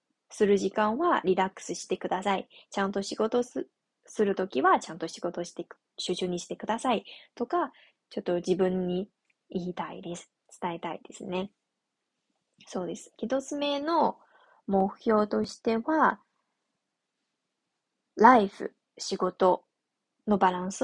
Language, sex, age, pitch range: Japanese, female, 20-39, 185-265 Hz